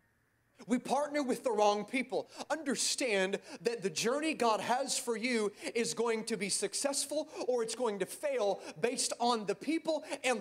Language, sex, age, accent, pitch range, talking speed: English, male, 30-49, American, 220-275 Hz, 165 wpm